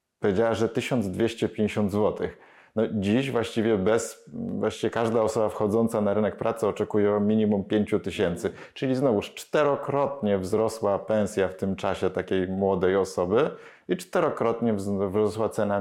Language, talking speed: Polish, 125 wpm